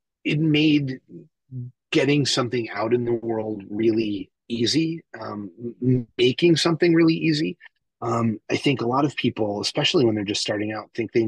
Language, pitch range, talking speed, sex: English, 110-155 Hz, 160 wpm, male